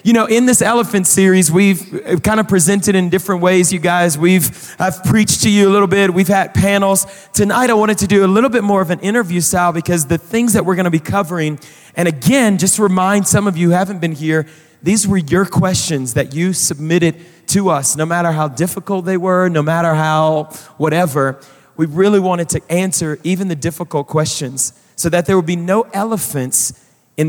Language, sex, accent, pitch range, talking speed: English, male, American, 155-190 Hz, 210 wpm